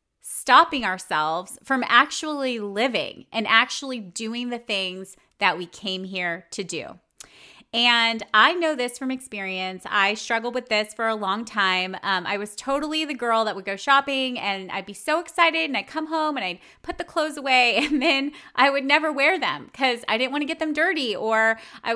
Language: English